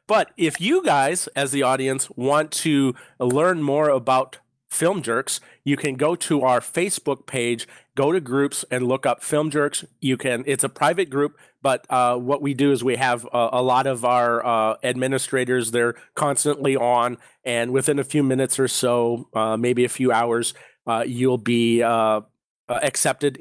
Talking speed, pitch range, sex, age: 180 wpm, 125-145 Hz, male, 40-59